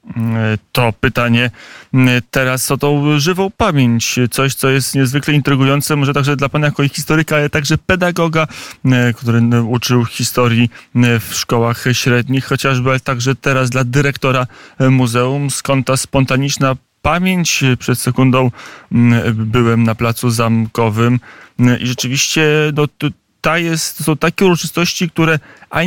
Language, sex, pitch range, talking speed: Polish, male, 120-140 Hz, 130 wpm